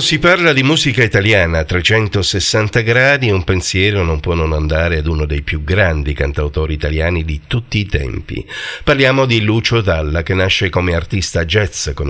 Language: Italian